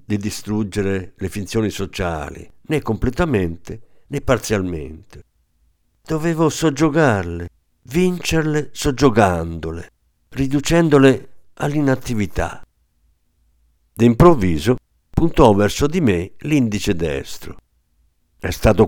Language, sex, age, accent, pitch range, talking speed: Italian, male, 50-69, native, 85-130 Hz, 75 wpm